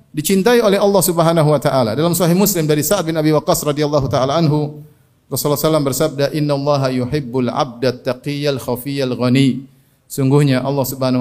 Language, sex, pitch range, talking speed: Indonesian, male, 135-200 Hz, 165 wpm